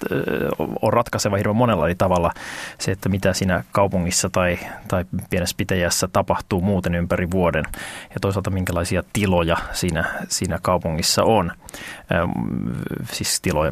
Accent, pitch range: native, 90-105 Hz